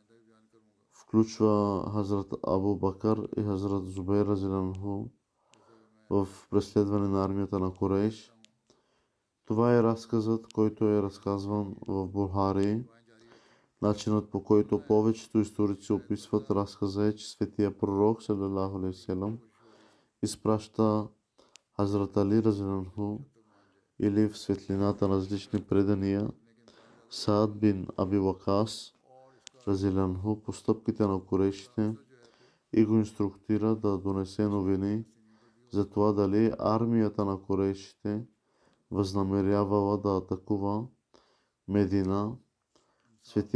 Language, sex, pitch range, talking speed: Bulgarian, male, 100-110 Hz, 95 wpm